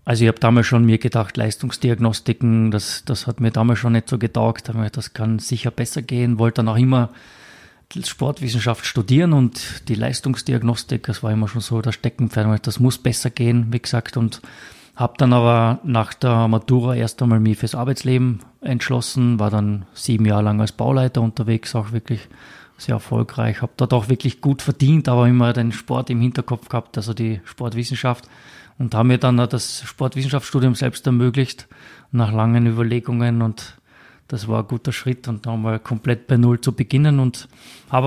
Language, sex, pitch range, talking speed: German, male, 115-125 Hz, 180 wpm